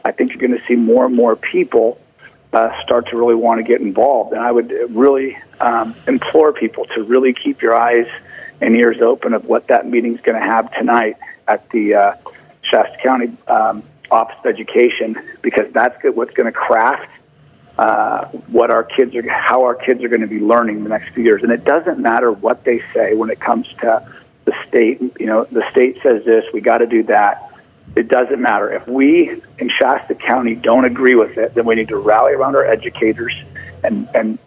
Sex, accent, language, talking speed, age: male, American, English, 210 wpm, 40-59